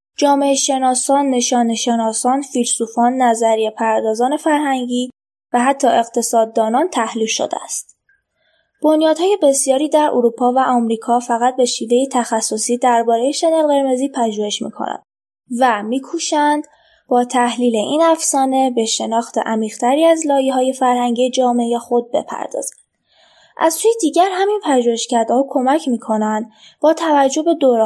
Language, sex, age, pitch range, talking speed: Persian, female, 20-39, 235-285 Hz, 125 wpm